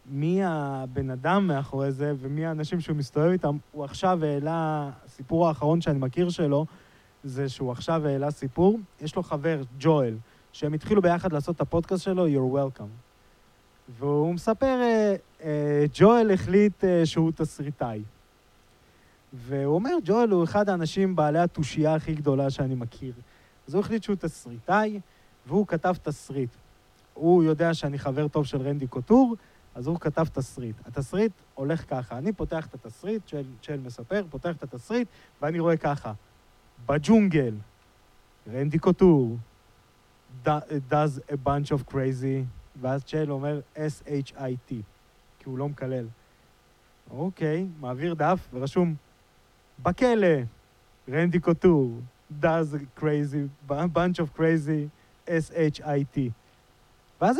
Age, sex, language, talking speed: 20-39, male, Hebrew, 130 wpm